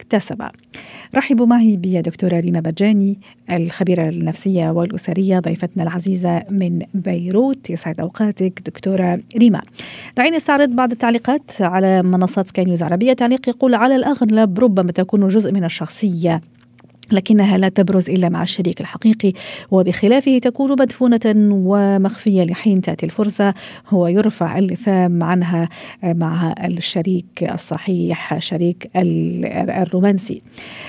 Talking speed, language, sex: 115 wpm, Arabic, female